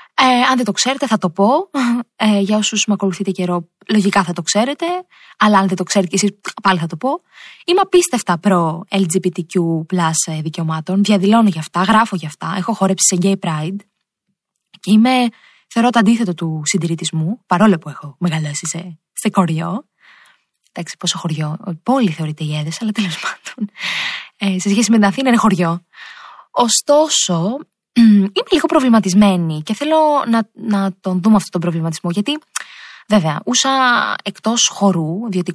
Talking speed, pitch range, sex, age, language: 155 wpm, 175-235 Hz, female, 20-39, Greek